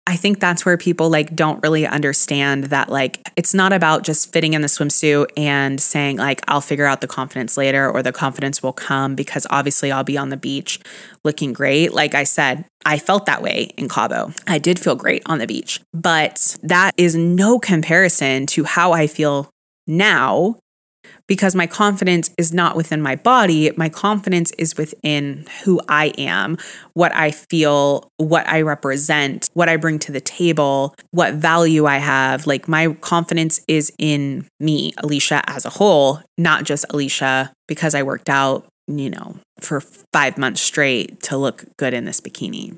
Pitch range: 140-170 Hz